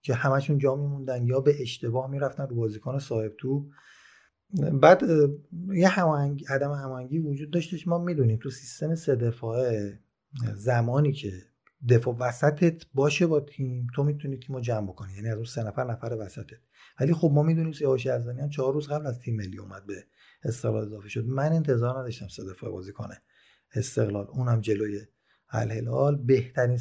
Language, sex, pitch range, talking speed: Persian, male, 115-140 Hz, 165 wpm